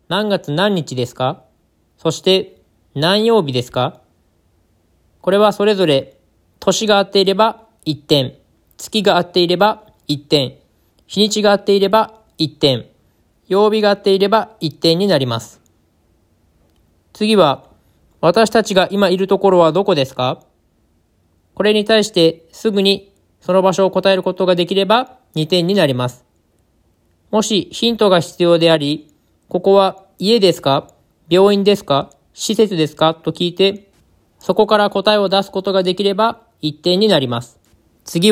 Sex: male